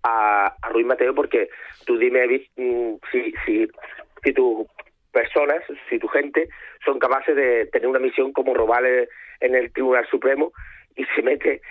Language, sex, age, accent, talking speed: Spanish, male, 40-59, Spanish, 155 wpm